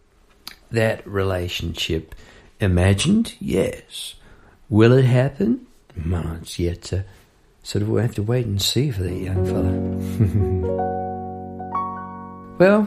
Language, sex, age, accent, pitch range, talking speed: English, male, 50-69, British, 95-125 Hz, 105 wpm